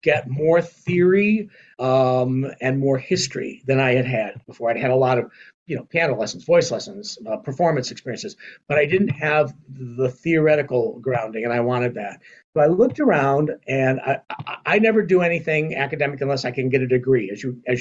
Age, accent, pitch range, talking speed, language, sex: 50-69, American, 125-165 Hz, 195 wpm, English, male